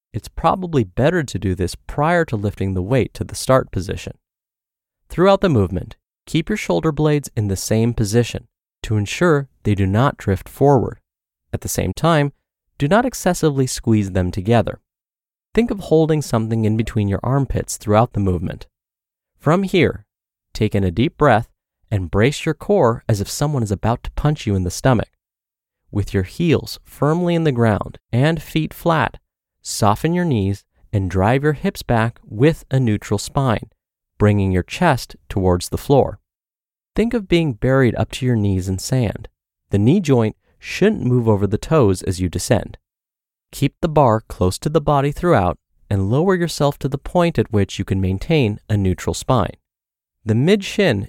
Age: 30-49